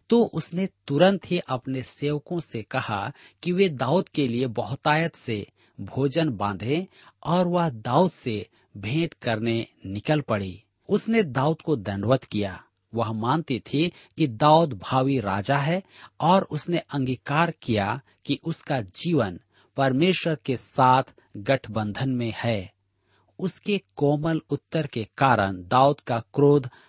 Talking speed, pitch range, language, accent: 130 wpm, 110-160 Hz, Hindi, native